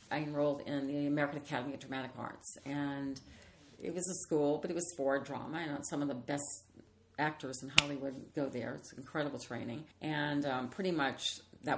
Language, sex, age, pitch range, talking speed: English, female, 50-69, 135-155 Hz, 190 wpm